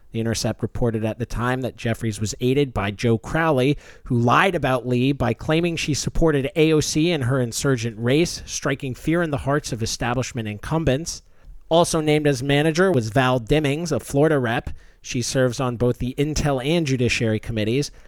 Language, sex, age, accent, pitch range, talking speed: English, male, 40-59, American, 120-165 Hz, 175 wpm